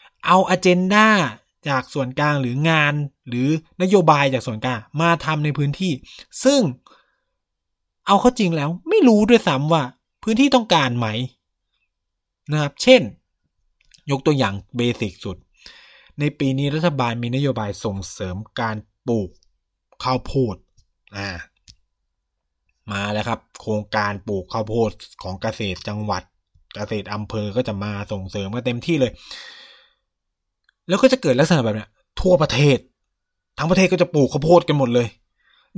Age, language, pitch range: 20-39, Thai, 105-175 Hz